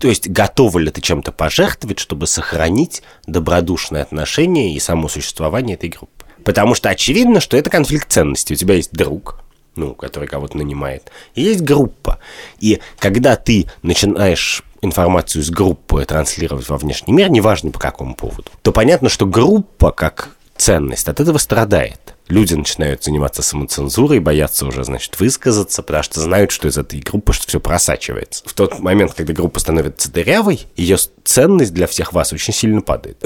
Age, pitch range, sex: 30-49, 75-100 Hz, male